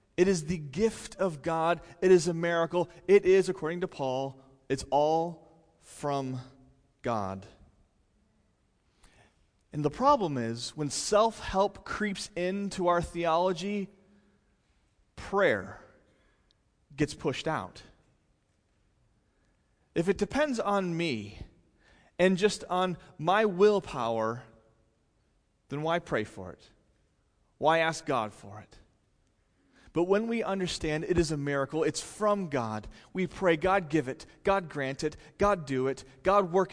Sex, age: male, 30-49